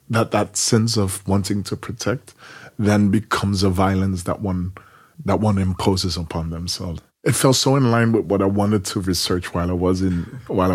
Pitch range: 95-115 Hz